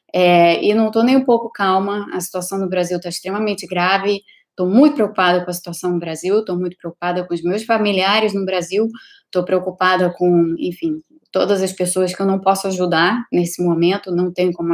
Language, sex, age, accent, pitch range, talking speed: Portuguese, female, 20-39, Brazilian, 170-190 Hz, 195 wpm